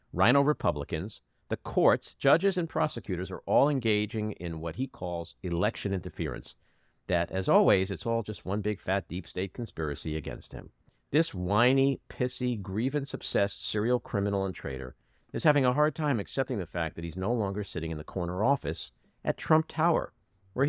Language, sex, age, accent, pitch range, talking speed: English, male, 50-69, American, 95-130 Hz, 170 wpm